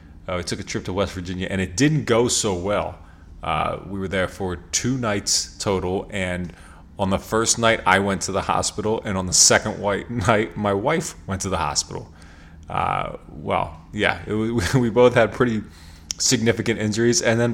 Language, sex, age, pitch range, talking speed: English, male, 20-39, 85-110 Hz, 190 wpm